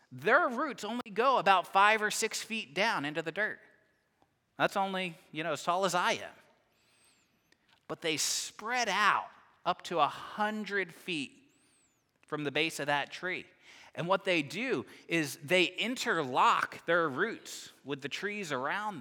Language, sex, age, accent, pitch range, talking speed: English, male, 30-49, American, 130-190 Hz, 160 wpm